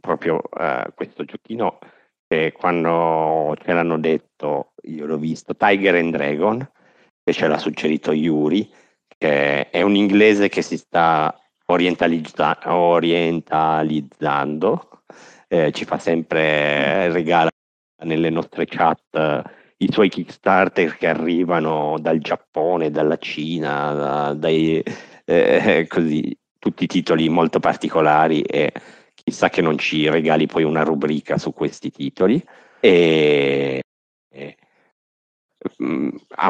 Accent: native